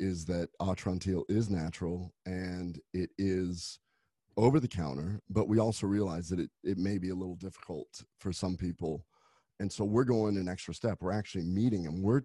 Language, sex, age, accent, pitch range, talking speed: English, male, 40-59, American, 90-105 Hz, 185 wpm